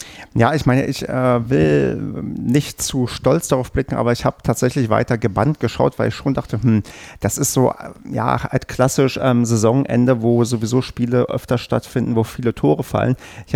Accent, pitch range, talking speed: German, 105-125 Hz, 180 wpm